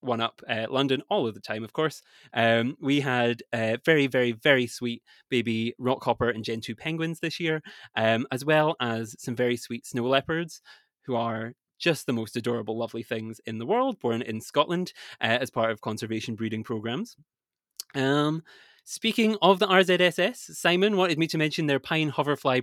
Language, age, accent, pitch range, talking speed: English, 20-39, British, 115-155 Hz, 185 wpm